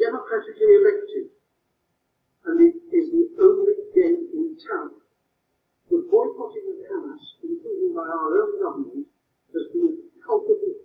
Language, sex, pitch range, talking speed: Italian, male, 345-410 Hz, 125 wpm